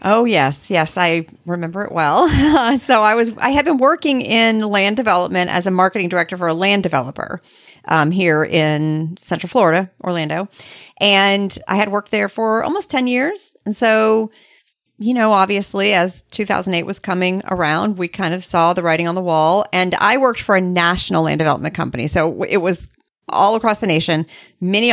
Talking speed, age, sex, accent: 185 wpm, 40-59, female, American